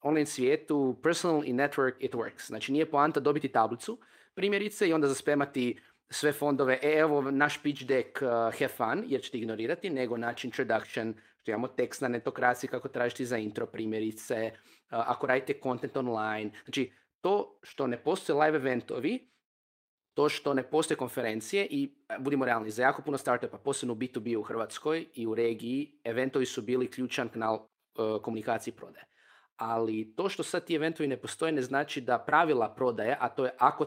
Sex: male